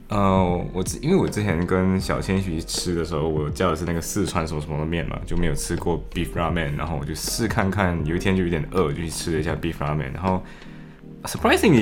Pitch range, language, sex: 80-105 Hz, Chinese, male